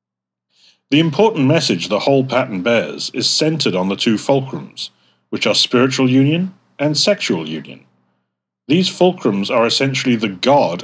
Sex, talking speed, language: male, 145 wpm, English